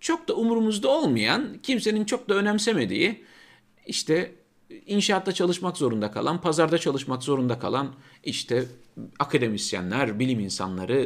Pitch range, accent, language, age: 120-180 Hz, native, Turkish, 50-69